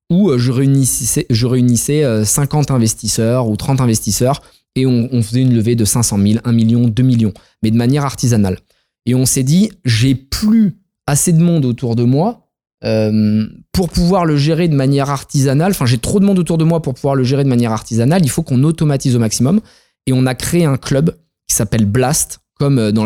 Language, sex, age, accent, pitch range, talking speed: French, male, 20-39, French, 120-165 Hz, 205 wpm